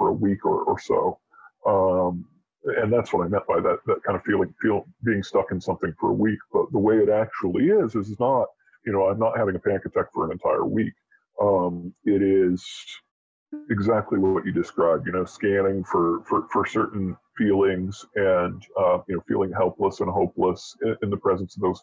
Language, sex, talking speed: English, female, 210 wpm